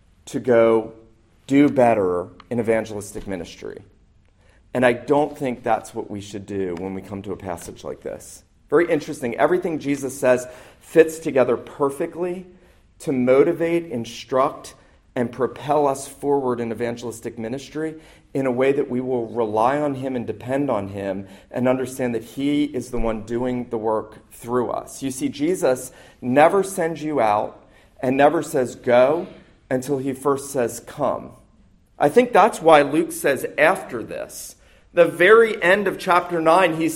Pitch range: 120-170 Hz